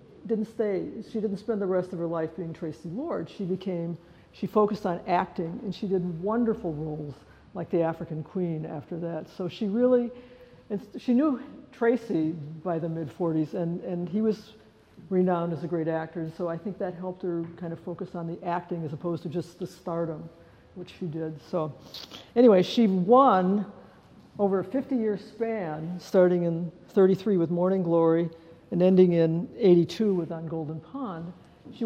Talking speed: 175 wpm